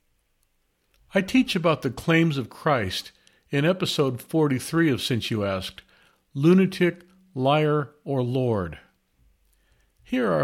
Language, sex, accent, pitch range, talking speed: English, male, American, 110-170 Hz, 115 wpm